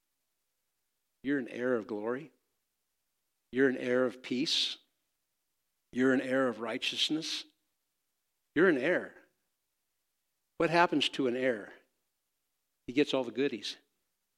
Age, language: 60-79, English